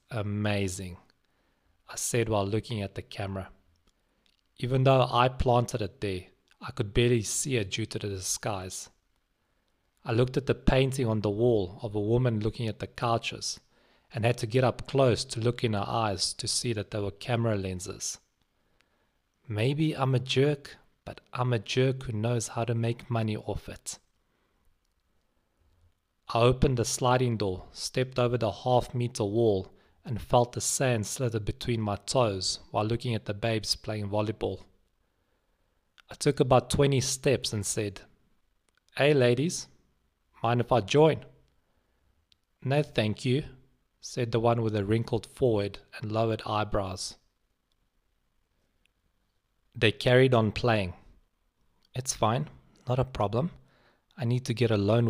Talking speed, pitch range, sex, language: 150 wpm, 100-125 Hz, male, English